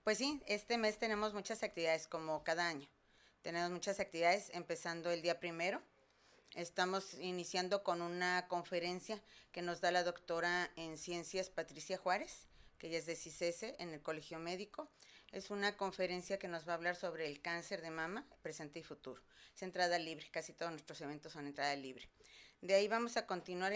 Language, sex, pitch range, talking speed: Spanish, female, 165-195 Hz, 180 wpm